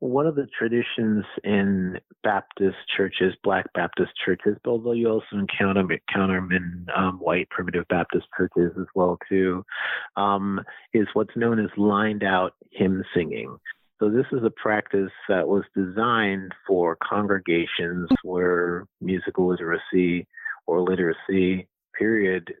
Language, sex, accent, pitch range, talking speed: English, male, American, 85-100 Hz, 130 wpm